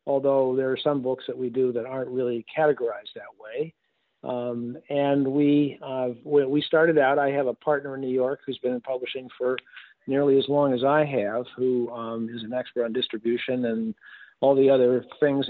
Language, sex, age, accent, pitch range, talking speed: English, male, 50-69, American, 120-140 Hz, 200 wpm